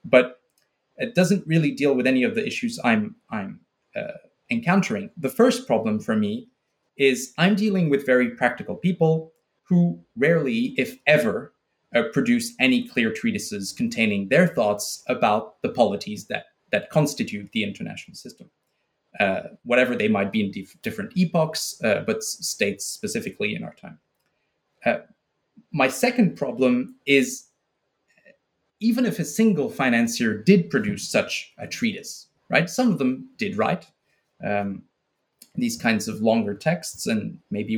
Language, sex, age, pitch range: English, male, 30-49, 135-220 Hz